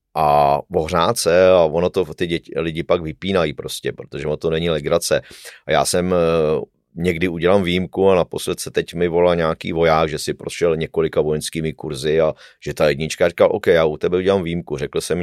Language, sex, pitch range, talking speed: Czech, male, 80-90 Hz, 195 wpm